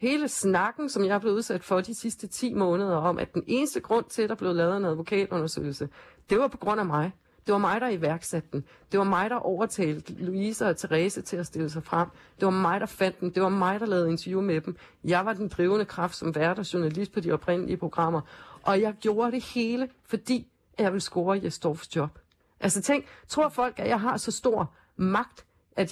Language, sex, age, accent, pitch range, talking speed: Danish, female, 40-59, native, 165-210 Hz, 225 wpm